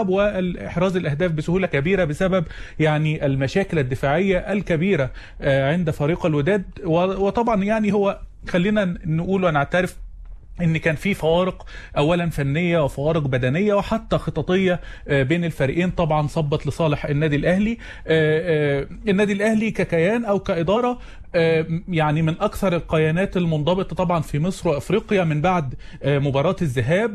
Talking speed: 115 wpm